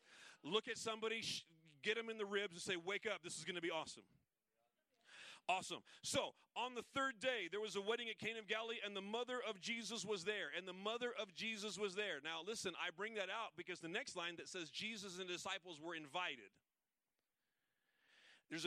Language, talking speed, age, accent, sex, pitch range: English, 205 wpm, 40-59, American, male, 165-210 Hz